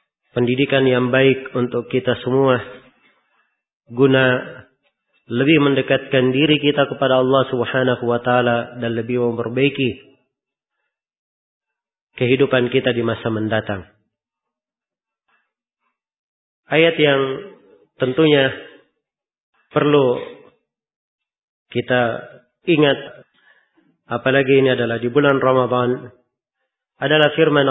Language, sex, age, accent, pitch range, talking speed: Indonesian, male, 30-49, native, 125-140 Hz, 80 wpm